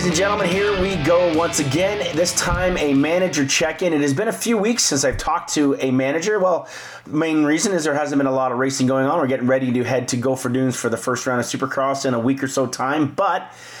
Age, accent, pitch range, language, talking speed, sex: 30-49, American, 130-150 Hz, English, 260 wpm, male